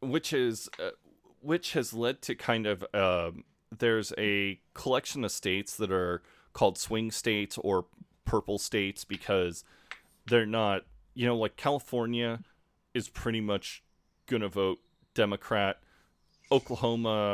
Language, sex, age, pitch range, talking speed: English, male, 30-49, 95-120 Hz, 130 wpm